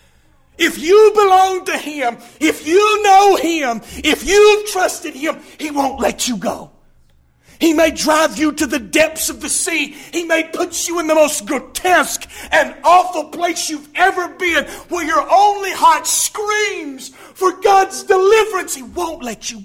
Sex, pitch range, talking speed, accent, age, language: male, 220-335 Hz, 165 wpm, American, 50-69, English